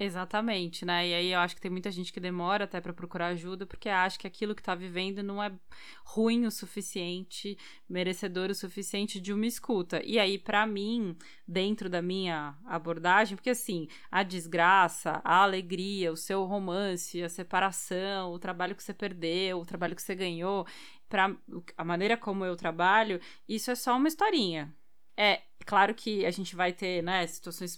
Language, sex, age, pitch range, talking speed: Portuguese, female, 20-39, 185-245 Hz, 175 wpm